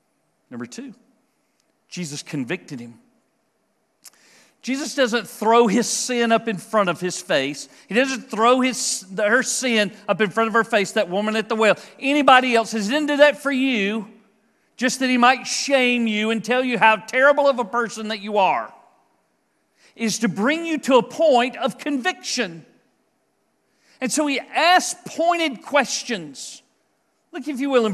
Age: 50-69